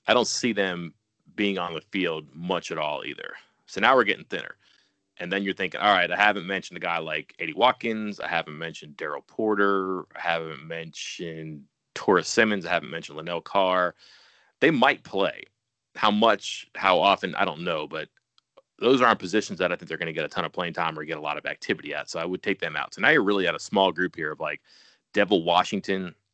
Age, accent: 30-49, American